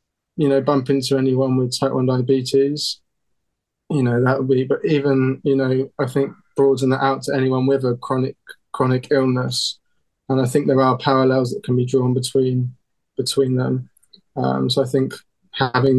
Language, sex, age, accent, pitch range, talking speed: English, male, 20-39, British, 125-135 Hz, 180 wpm